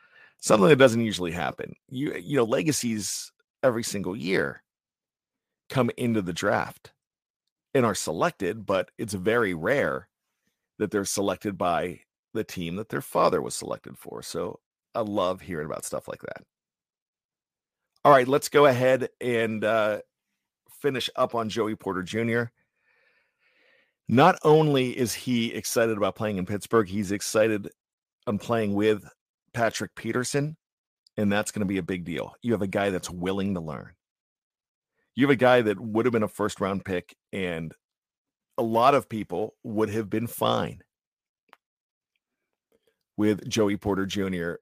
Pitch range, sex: 95-115 Hz, male